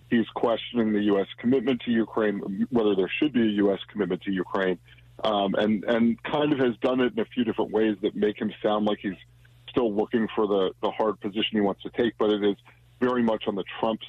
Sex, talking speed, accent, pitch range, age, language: male, 230 wpm, American, 100-120 Hz, 40-59, English